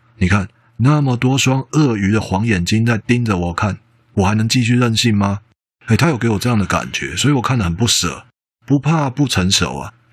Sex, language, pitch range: male, Chinese, 90-120 Hz